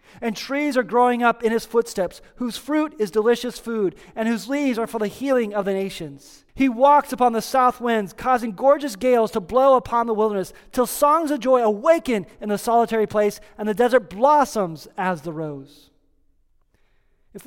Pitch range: 185-250 Hz